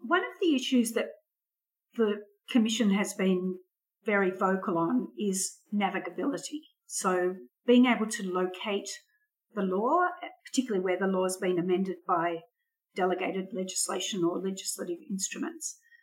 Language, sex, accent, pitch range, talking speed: English, female, Australian, 185-265 Hz, 125 wpm